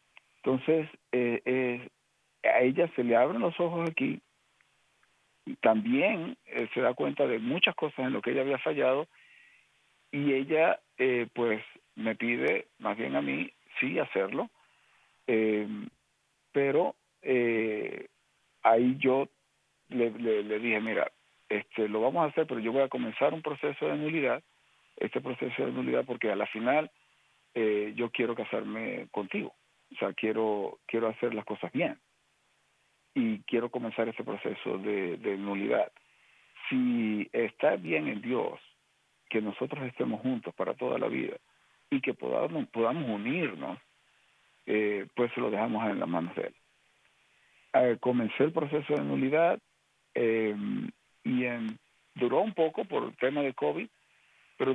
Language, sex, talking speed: Spanish, male, 150 wpm